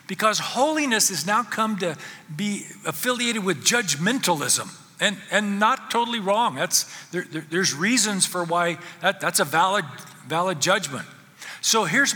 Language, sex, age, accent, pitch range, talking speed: English, male, 50-69, American, 165-225 Hz, 150 wpm